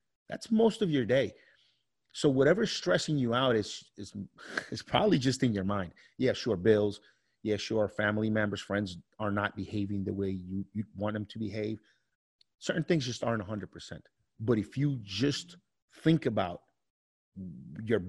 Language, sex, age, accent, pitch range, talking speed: English, male, 30-49, American, 100-125 Hz, 165 wpm